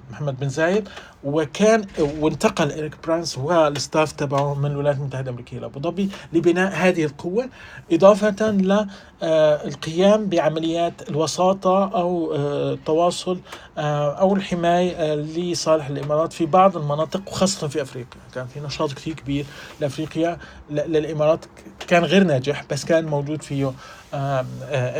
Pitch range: 145-185 Hz